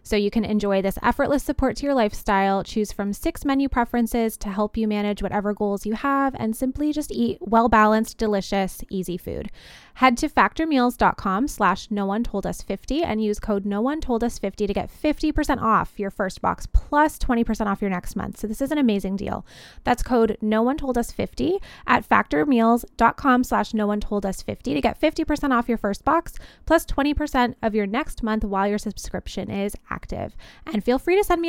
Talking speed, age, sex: 210 wpm, 20-39, female